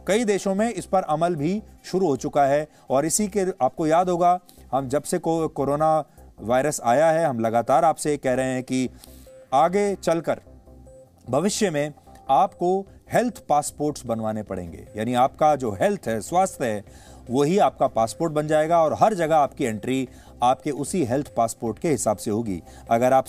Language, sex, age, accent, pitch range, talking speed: English, male, 30-49, Indian, 115-170 Hz, 175 wpm